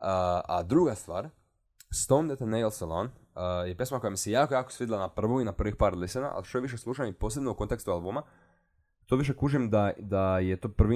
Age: 20-39